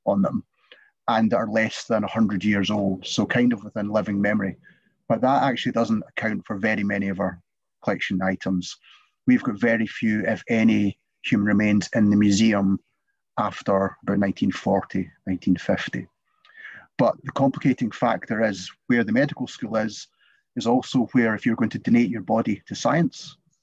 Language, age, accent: English, 30-49, British